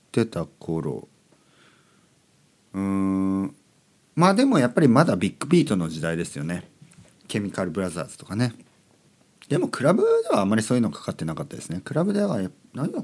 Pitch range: 90-135 Hz